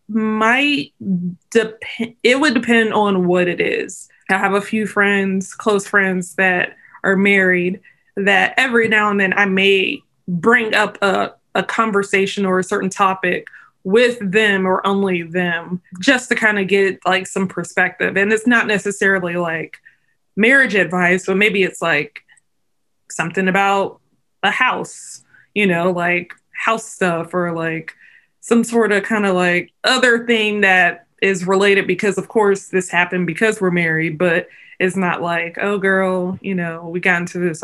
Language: English